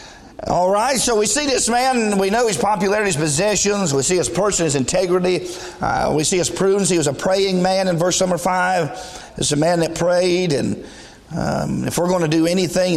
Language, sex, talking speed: English, male, 215 wpm